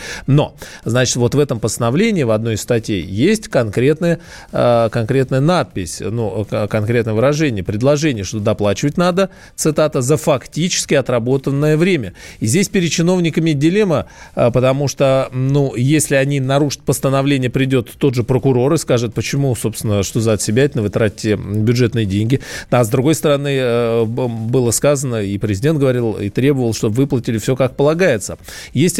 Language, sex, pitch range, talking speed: Russian, male, 115-150 Hz, 150 wpm